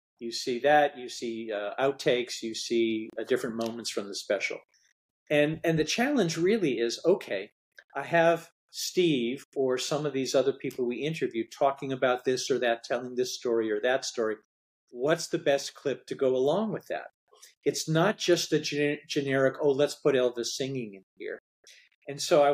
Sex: male